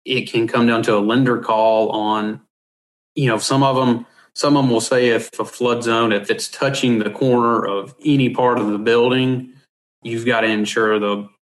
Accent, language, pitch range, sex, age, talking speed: American, English, 110-130 Hz, male, 30-49, 205 wpm